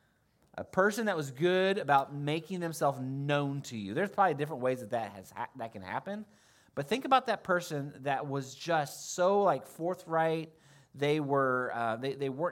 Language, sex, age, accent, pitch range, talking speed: English, male, 30-49, American, 125-170 Hz, 185 wpm